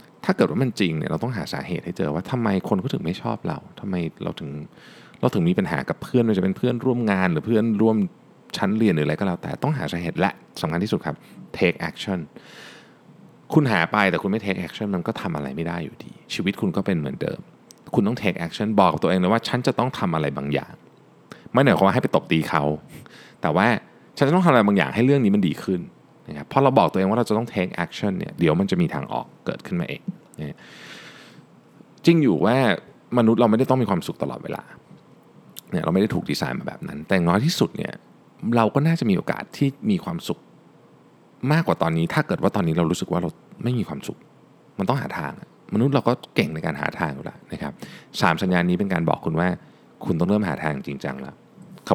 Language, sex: Thai, male